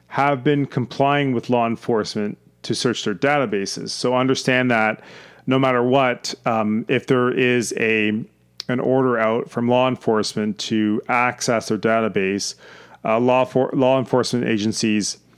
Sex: male